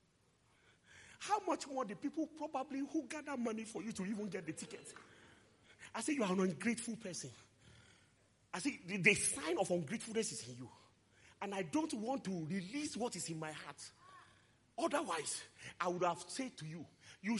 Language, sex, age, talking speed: English, male, 40-59, 180 wpm